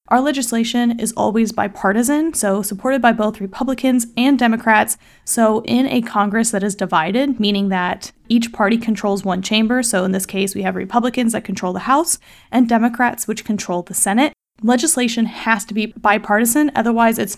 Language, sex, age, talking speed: English, female, 20-39, 175 wpm